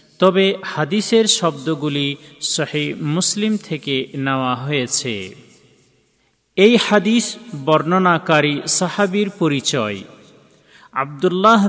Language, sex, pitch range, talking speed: Bengali, male, 140-185 Hz, 70 wpm